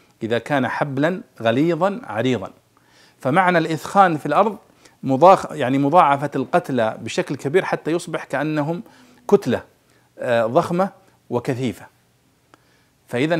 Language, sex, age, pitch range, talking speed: Arabic, male, 50-69, 115-165 Hz, 100 wpm